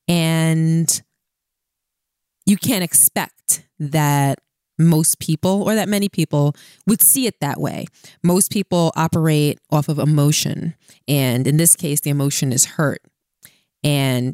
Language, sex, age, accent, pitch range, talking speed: English, female, 20-39, American, 145-195 Hz, 130 wpm